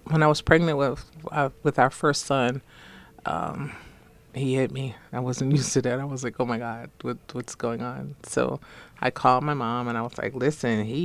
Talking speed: 215 wpm